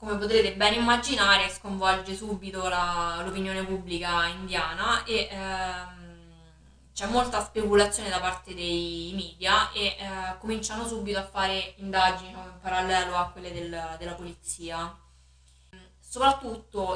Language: Italian